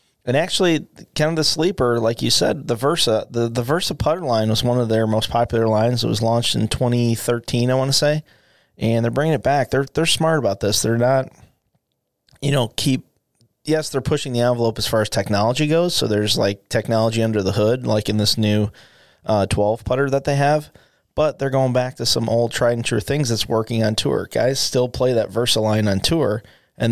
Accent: American